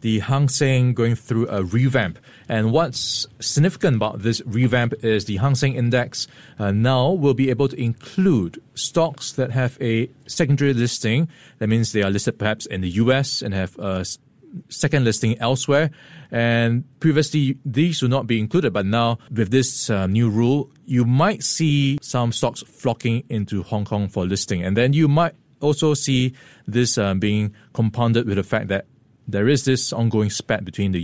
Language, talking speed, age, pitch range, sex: English, 180 wpm, 20-39, 110-140 Hz, male